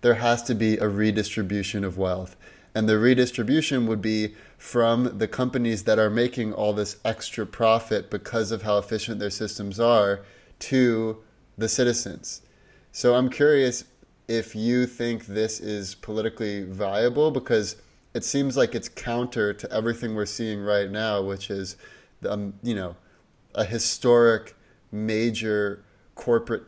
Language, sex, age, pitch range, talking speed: English, male, 20-39, 100-115 Hz, 145 wpm